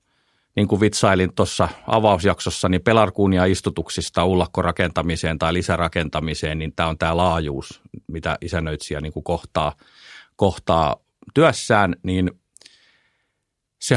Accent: native